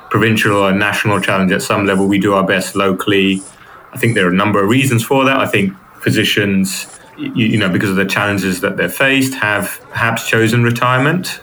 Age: 30-49